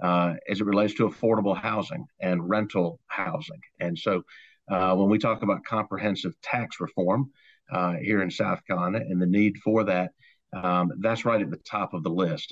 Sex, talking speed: male, 185 wpm